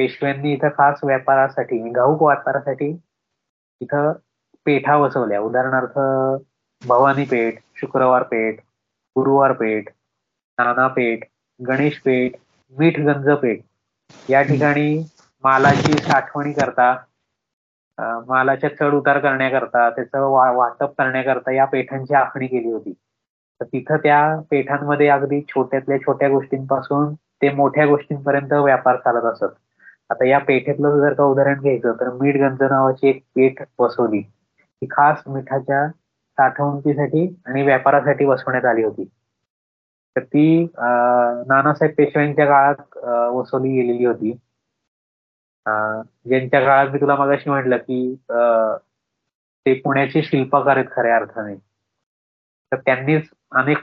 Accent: native